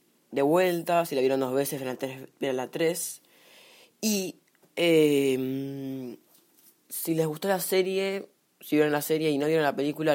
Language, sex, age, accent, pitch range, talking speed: Spanish, female, 20-39, Argentinian, 125-155 Hz, 160 wpm